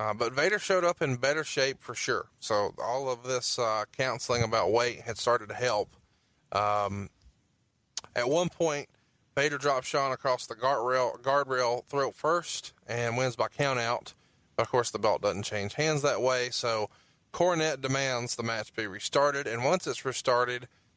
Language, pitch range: English, 120-145 Hz